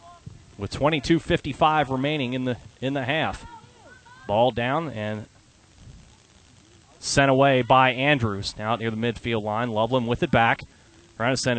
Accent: American